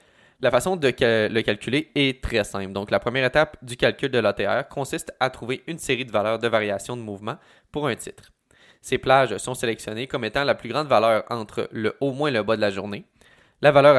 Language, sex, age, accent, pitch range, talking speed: French, male, 20-39, Canadian, 110-135 Hz, 220 wpm